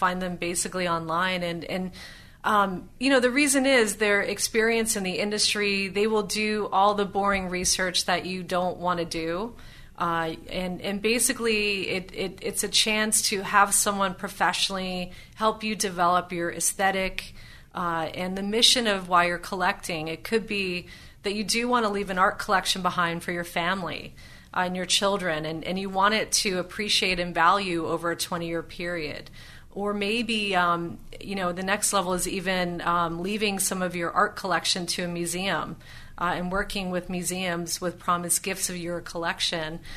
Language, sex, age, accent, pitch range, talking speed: English, female, 30-49, American, 175-200 Hz, 180 wpm